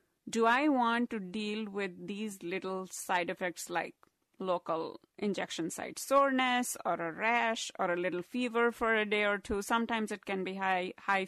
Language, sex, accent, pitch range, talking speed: English, female, Indian, 200-260 Hz, 175 wpm